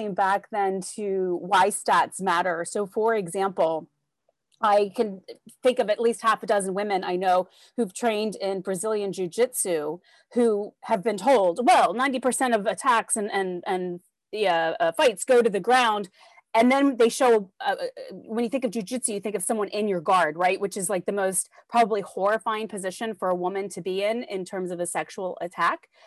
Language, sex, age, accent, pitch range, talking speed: English, female, 30-49, American, 190-240 Hz, 190 wpm